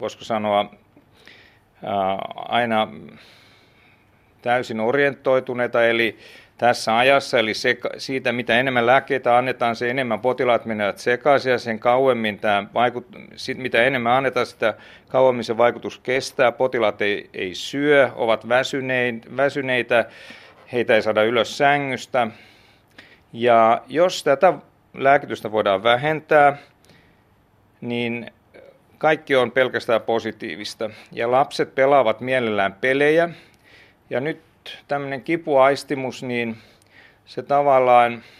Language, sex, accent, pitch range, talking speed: Finnish, male, native, 110-135 Hz, 105 wpm